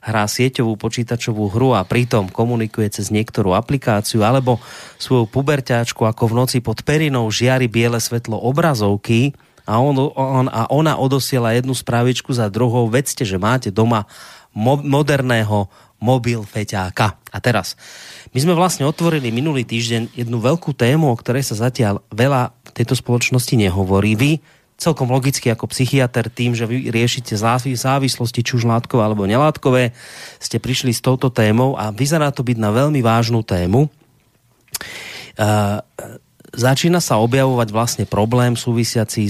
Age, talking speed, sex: 30-49, 145 wpm, male